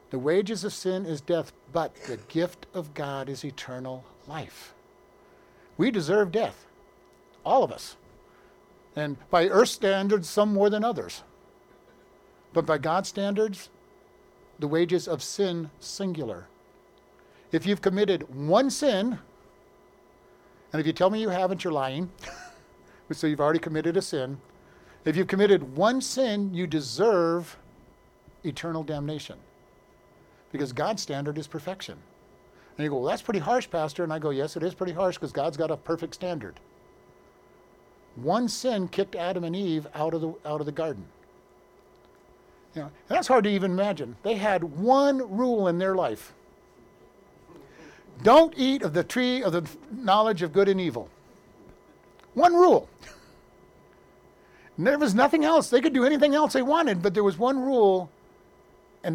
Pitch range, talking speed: 155-210 Hz, 155 wpm